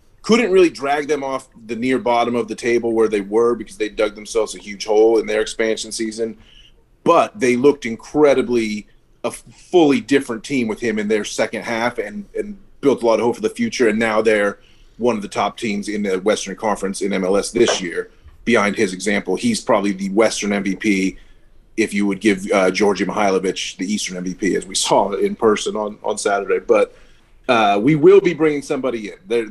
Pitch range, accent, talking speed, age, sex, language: 110-135 Hz, American, 205 wpm, 30-49, male, English